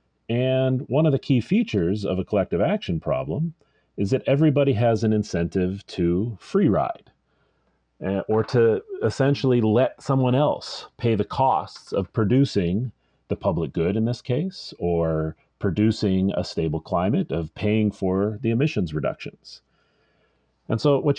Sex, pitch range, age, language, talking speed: male, 95-140 Hz, 40-59, English, 145 wpm